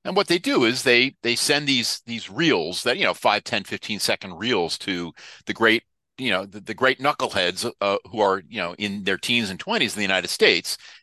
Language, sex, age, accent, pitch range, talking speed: English, male, 50-69, American, 100-130 Hz, 230 wpm